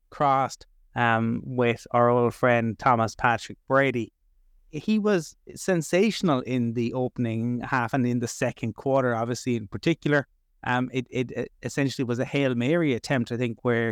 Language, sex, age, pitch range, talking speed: English, male, 30-49, 115-150 Hz, 160 wpm